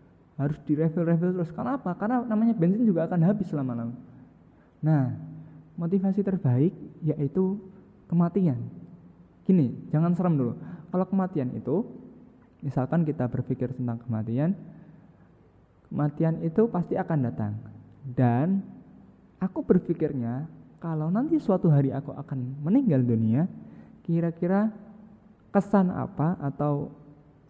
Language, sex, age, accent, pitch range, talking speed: Indonesian, male, 20-39, native, 130-175 Hz, 105 wpm